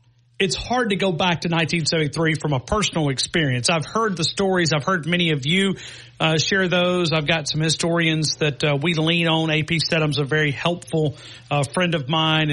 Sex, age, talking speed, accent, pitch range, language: male, 40-59, 195 wpm, American, 150-180 Hz, English